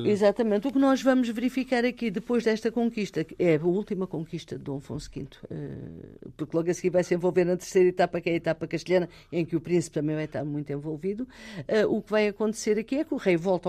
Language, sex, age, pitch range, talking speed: Portuguese, female, 50-69, 155-210 Hz, 230 wpm